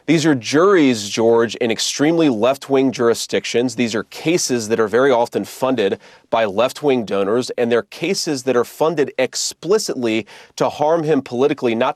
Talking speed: 155 wpm